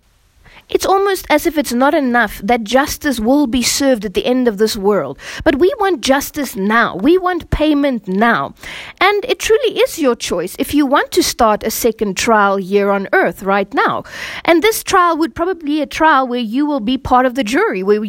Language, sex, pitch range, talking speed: English, female, 225-305 Hz, 210 wpm